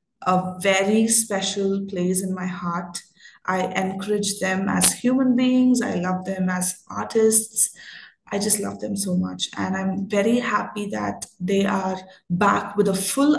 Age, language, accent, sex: 20-39, English, Indian, female